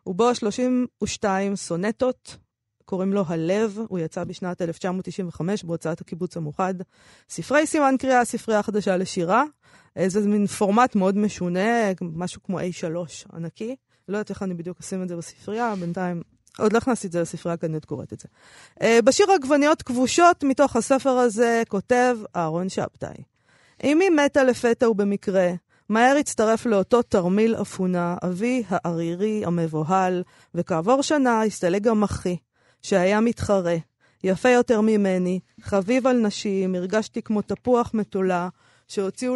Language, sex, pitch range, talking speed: Hebrew, female, 175-235 Hz, 135 wpm